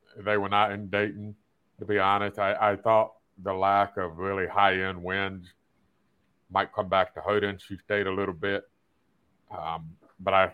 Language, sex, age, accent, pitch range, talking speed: English, male, 50-69, American, 90-105 Hz, 170 wpm